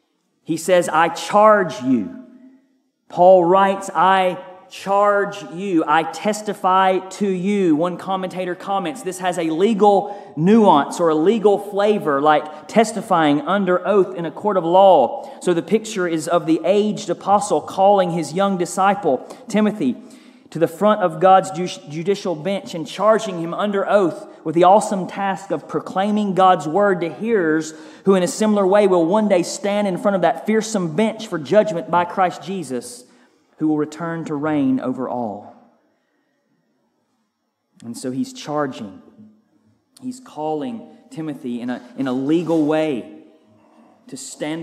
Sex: male